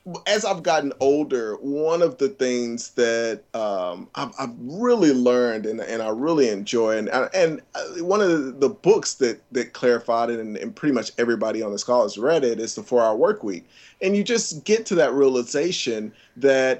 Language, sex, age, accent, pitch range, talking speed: English, male, 30-49, American, 120-150 Hz, 185 wpm